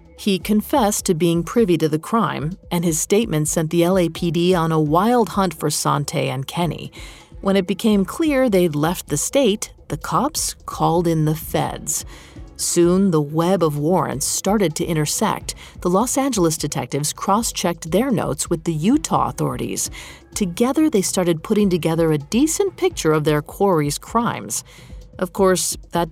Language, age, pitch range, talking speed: English, 40-59, 160-210 Hz, 160 wpm